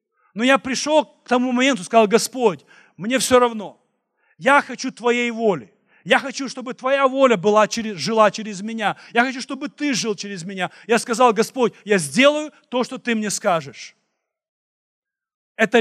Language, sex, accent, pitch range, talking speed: Russian, male, native, 205-250 Hz, 160 wpm